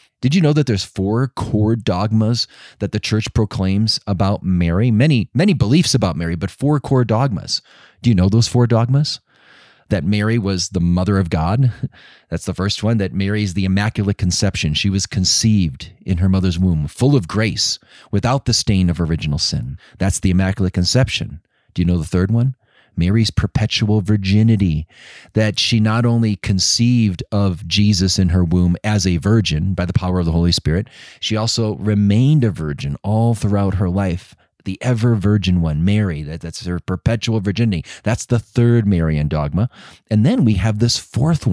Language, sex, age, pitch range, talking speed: English, male, 30-49, 90-115 Hz, 180 wpm